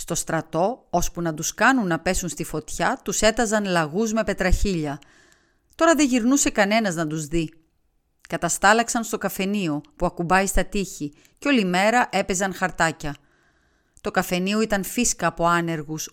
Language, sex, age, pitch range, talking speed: Greek, female, 30-49, 165-215 Hz, 150 wpm